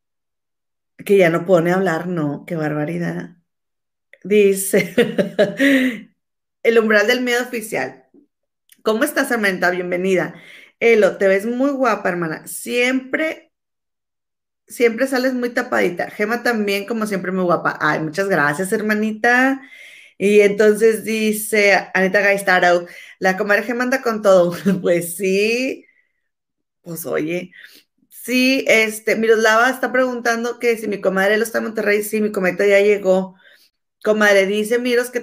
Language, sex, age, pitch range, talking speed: Spanish, female, 30-49, 185-235 Hz, 135 wpm